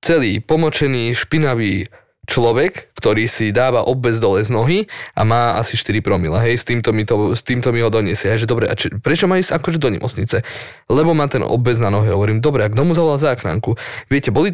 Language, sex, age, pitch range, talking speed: Slovak, male, 20-39, 110-135 Hz, 215 wpm